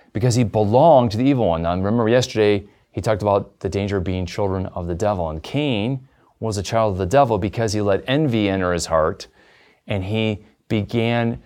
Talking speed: 205 wpm